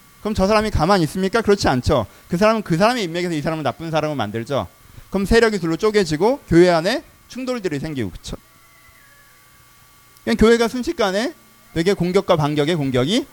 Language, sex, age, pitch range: Korean, male, 30-49, 125-185 Hz